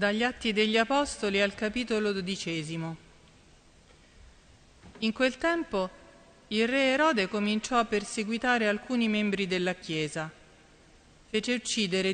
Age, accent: 40-59, native